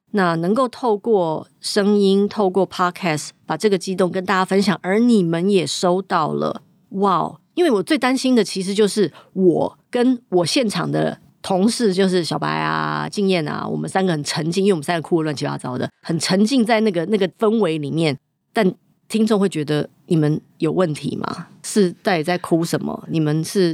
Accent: American